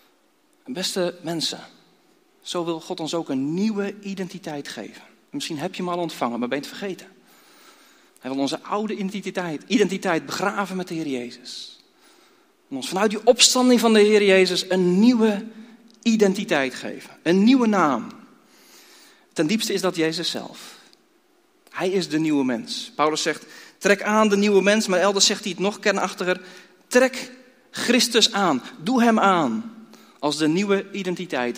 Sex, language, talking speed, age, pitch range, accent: male, Dutch, 160 wpm, 40-59, 170-250 Hz, Dutch